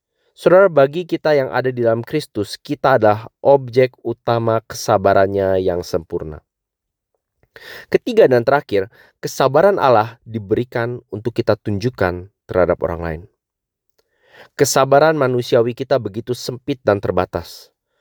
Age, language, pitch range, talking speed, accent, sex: 30-49, English, 100-135 Hz, 115 wpm, Indonesian, male